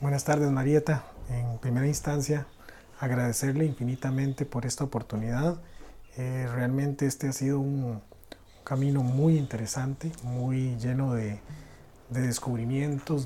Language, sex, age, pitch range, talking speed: Spanish, male, 40-59, 105-145 Hz, 120 wpm